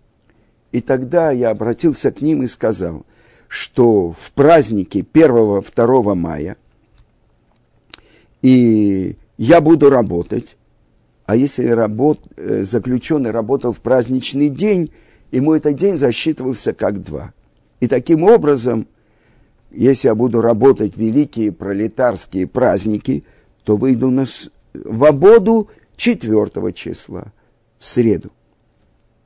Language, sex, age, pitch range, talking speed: Russian, male, 50-69, 115-155 Hz, 105 wpm